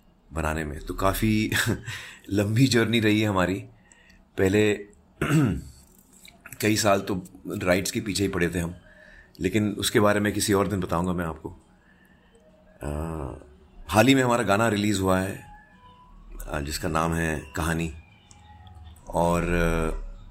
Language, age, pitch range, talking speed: Hindi, 30-49, 85-120 Hz, 125 wpm